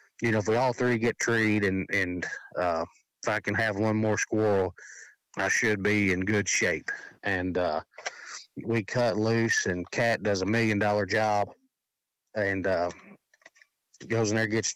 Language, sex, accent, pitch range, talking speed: English, male, American, 105-115 Hz, 170 wpm